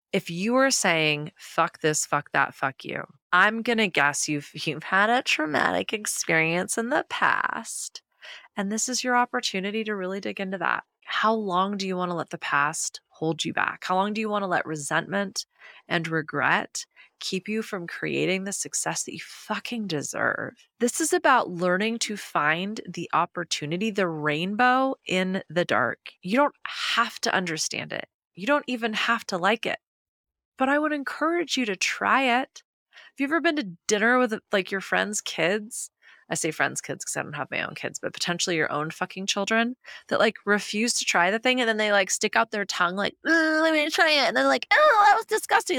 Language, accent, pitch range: English, American, 175-240 Hz